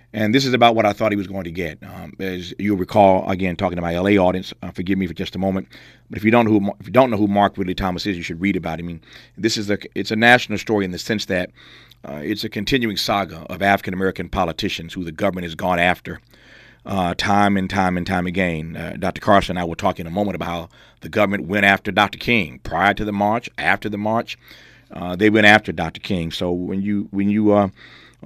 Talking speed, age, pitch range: 255 wpm, 40-59, 90-105 Hz